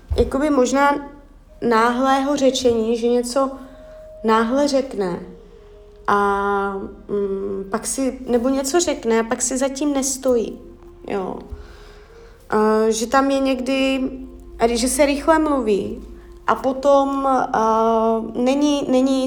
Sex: female